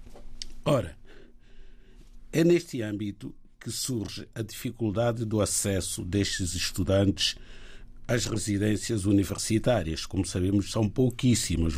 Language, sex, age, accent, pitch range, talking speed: Portuguese, male, 50-69, Brazilian, 95-120 Hz, 95 wpm